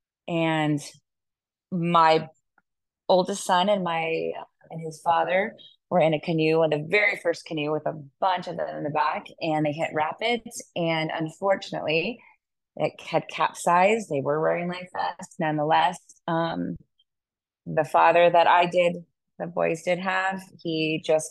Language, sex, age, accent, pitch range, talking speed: English, female, 30-49, American, 150-175 Hz, 150 wpm